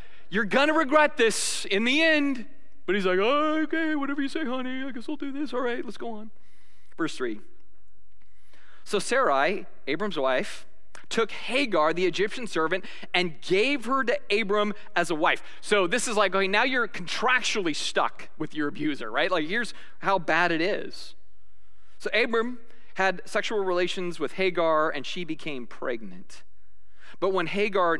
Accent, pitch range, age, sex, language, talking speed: American, 155-245 Hz, 30-49, male, English, 165 wpm